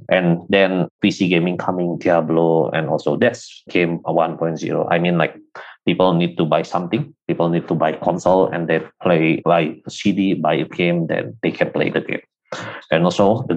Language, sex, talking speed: English, male, 180 wpm